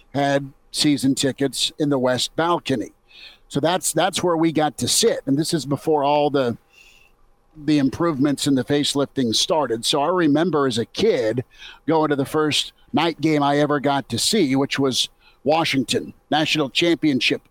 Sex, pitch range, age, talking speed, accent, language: male, 135-160 Hz, 50-69, 170 wpm, American, English